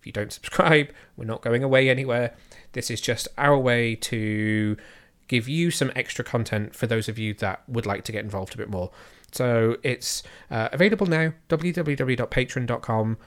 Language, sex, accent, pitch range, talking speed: English, male, British, 115-135 Hz, 170 wpm